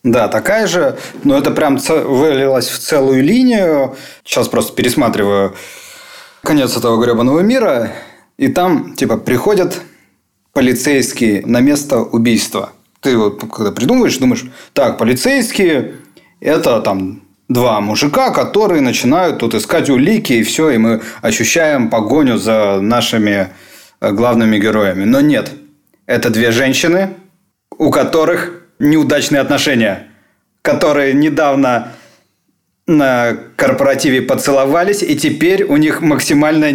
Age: 30-49